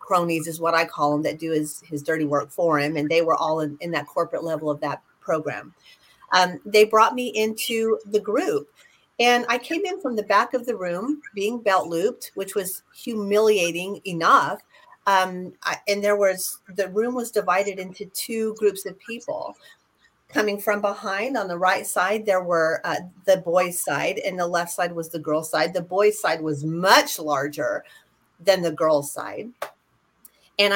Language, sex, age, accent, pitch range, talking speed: English, female, 40-59, American, 175-215 Hz, 185 wpm